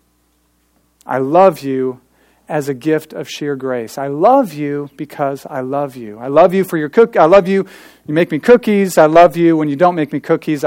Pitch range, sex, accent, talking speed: 110-155 Hz, male, American, 215 wpm